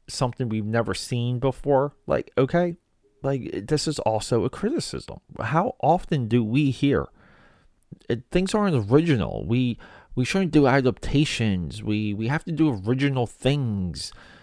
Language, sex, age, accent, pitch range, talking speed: English, male, 40-59, American, 110-150 Hz, 135 wpm